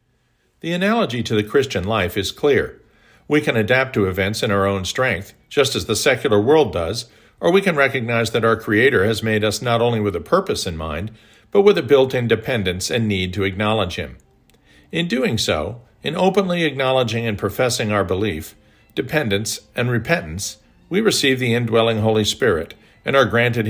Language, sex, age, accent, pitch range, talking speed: English, male, 50-69, American, 105-125 Hz, 180 wpm